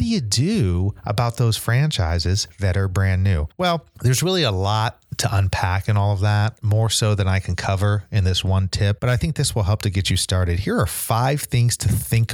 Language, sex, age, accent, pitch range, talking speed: English, male, 30-49, American, 95-120 Hz, 230 wpm